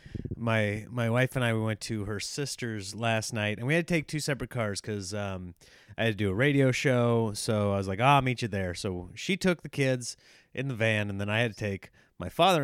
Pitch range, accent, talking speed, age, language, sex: 110-150 Hz, American, 255 wpm, 30-49, English, male